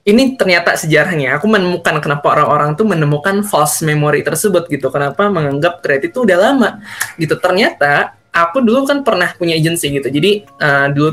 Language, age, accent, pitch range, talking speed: Indonesian, 20-39, native, 140-185 Hz, 165 wpm